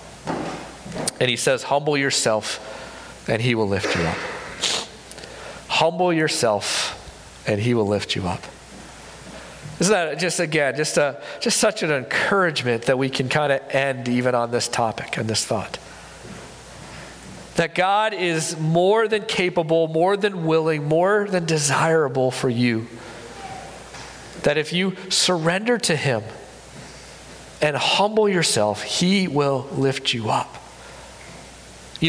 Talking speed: 135 wpm